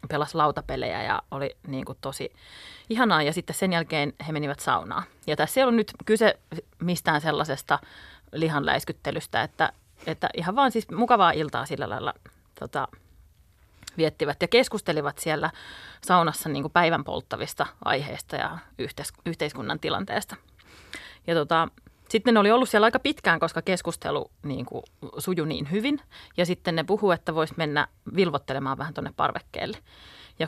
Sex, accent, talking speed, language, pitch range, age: female, native, 150 wpm, Finnish, 150-200 Hz, 30-49